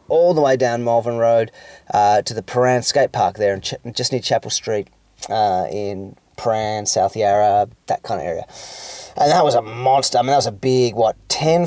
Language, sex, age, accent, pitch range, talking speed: English, male, 30-49, Australian, 110-145 Hz, 210 wpm